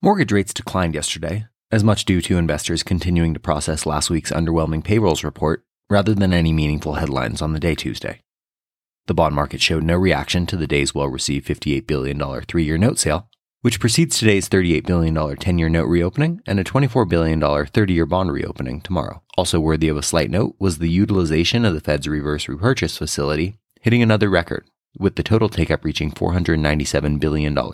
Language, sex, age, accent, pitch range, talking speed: English, male, 30-49, American, 75-105 Hz, 175 wpm